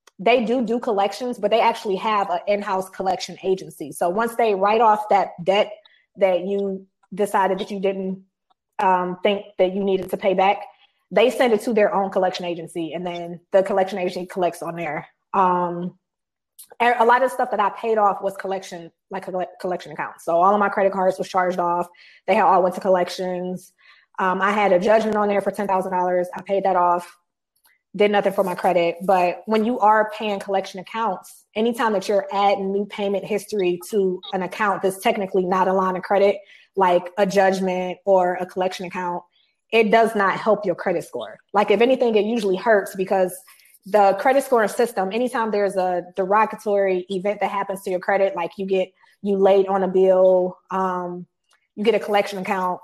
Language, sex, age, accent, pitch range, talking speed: English, female, 20-39, American, 185-205 Hz, 190 wpm